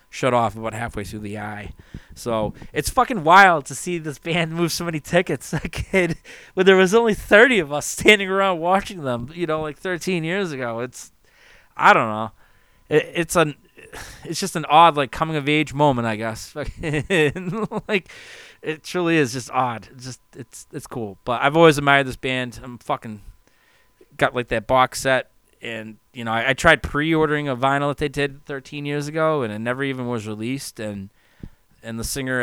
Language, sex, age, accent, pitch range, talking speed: English, male, 20-39, American, 115-155 Hz, 190 wpm